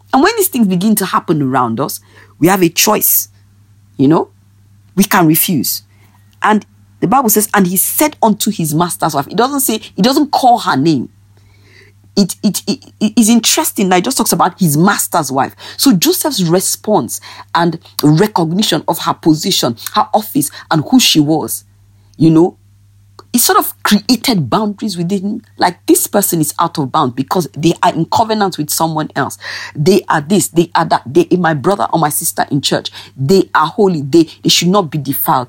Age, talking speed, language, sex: 40-59, 190 wpm, English, female